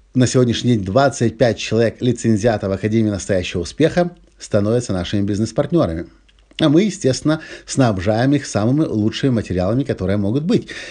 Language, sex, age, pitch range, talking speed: Russian, male, 50-69, 100-145 Hz, 125 wpm